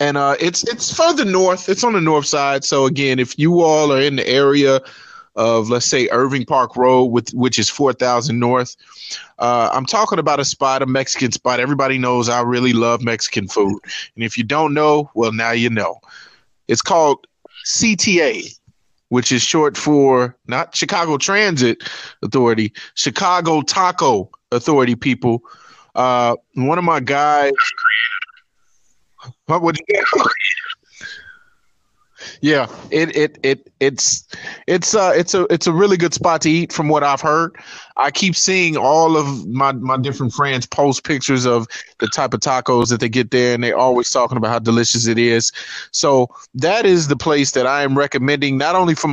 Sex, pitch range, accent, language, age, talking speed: male, 125-165 Hz, American, English, 20-39, 170 wpm